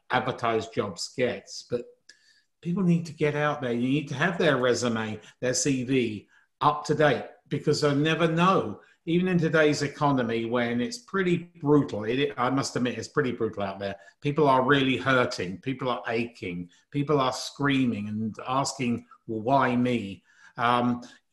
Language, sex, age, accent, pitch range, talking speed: English, male, 50-69, British, 125-160 Hz, 160 wpm